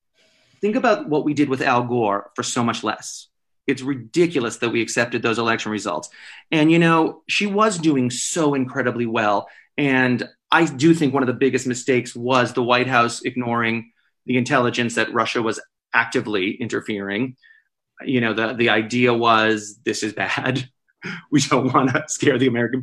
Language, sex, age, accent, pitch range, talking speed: English, male, 30-49, American, 115-140 Hz, 170 wpm